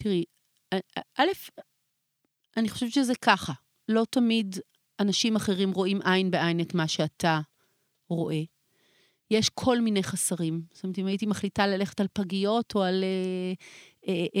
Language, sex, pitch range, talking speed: Hebrew, female, 185-225 Hz, 140 wpm